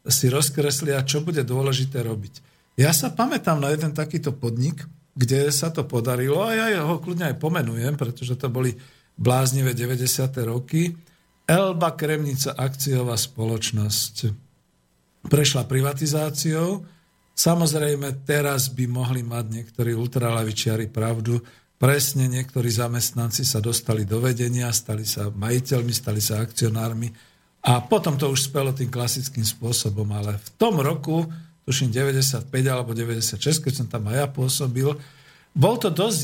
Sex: male